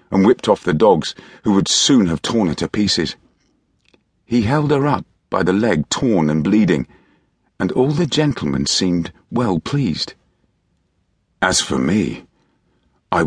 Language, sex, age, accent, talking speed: English, male, 50-69, British, 155 wpm